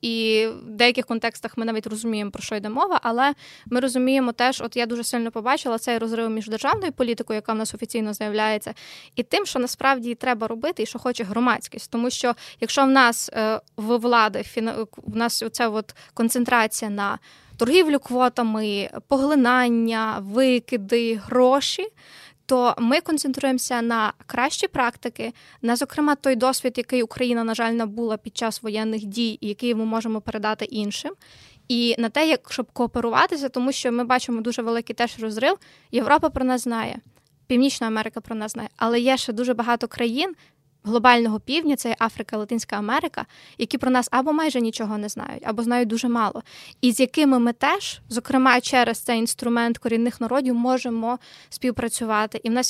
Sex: female